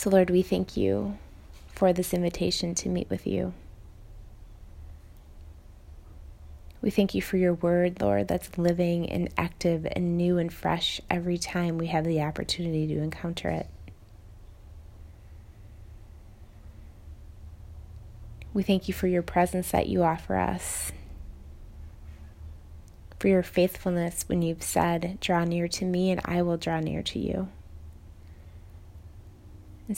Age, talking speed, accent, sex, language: 20-39, 130 wpm, American, female, English